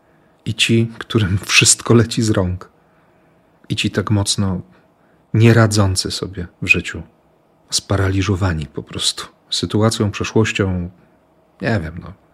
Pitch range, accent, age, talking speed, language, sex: 95-115 Hz, native, 40-59, 110 wpm, Polish, male